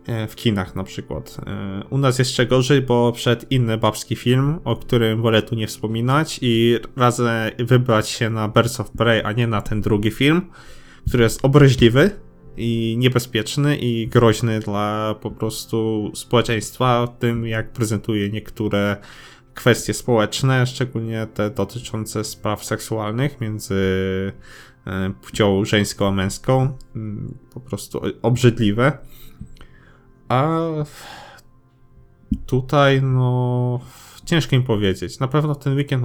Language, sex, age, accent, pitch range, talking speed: Polish, male, 20-39, native, 110-130 Hz, 120 wpm